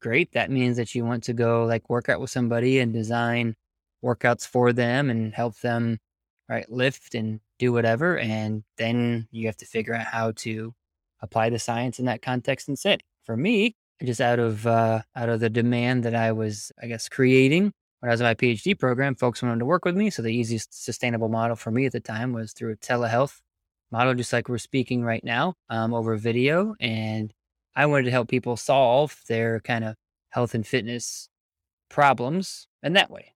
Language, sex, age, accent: English, male, 20-39, American